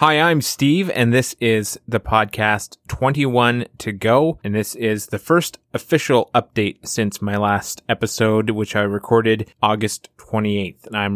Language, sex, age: English, male, 20-39